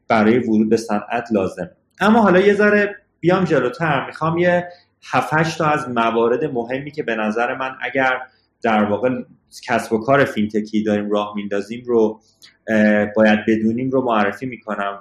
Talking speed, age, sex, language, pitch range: 150 wpm, 30-49, male, Persian, 105-135 Hz